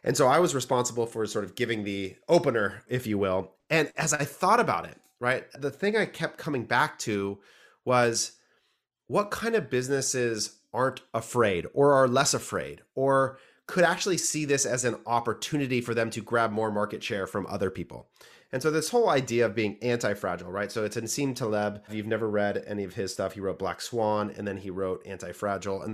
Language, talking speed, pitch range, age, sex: English, 205 wpm, 110-135 Hz, 30-49, male